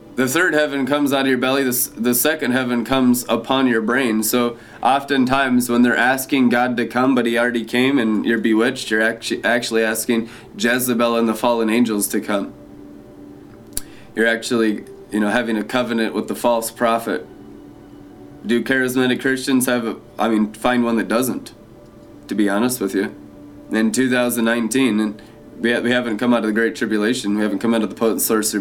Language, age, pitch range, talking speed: English, 20-39, 110-130 Hz, 180 wpm